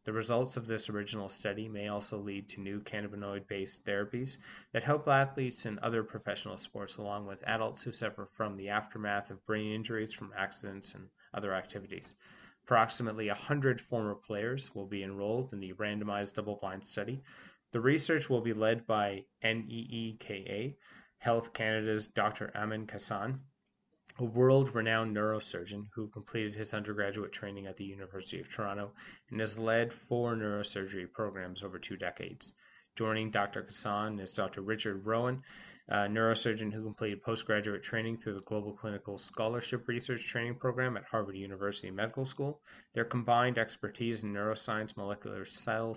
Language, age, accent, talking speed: English, 30-49, American, 150 wpm